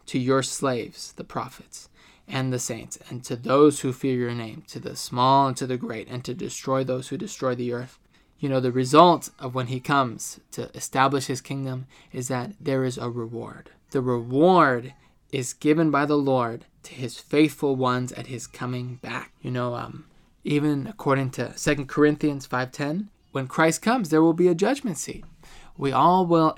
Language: English